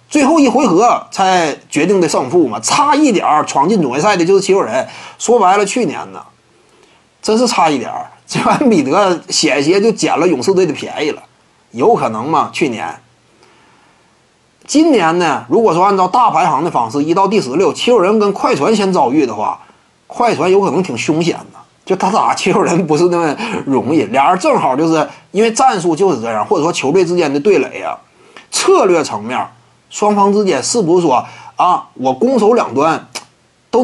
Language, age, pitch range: Chinese, 30-49, 180-245 Hz